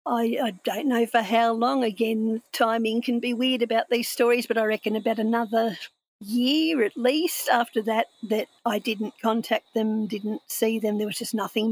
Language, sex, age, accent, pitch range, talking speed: English, female, 50-69, Australian, 215-235 Hz, 190 wpm